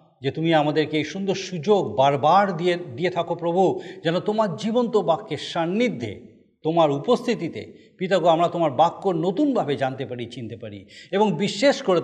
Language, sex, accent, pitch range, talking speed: Bengali, male, native, 150-190 Hz, 150 wpm